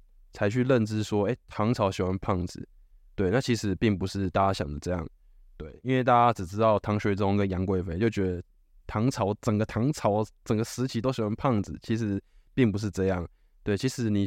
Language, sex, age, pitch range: Chinese, male, 20-39, 95-110 Hz